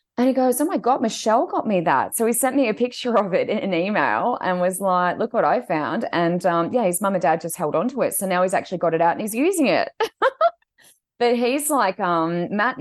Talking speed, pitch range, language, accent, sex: 260 wpm, 155-190 Hz, English, Australian, female